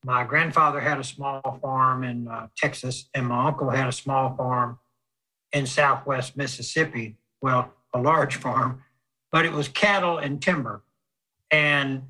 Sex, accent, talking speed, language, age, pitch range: male, American, 150 wpm, English, 60-79, 135-160 Hz